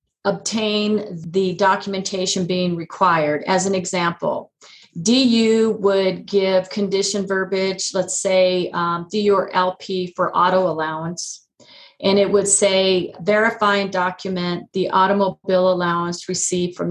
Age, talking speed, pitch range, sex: 40-59, 120 wpm, 180-210 Hz, female